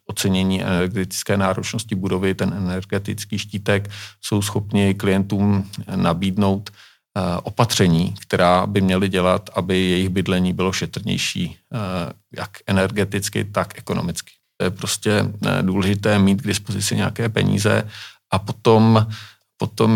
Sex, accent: male, native